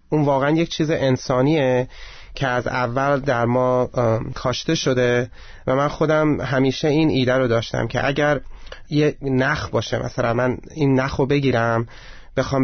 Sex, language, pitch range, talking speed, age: male, Persian, 120-145 Hz, 150 wpm, 30-49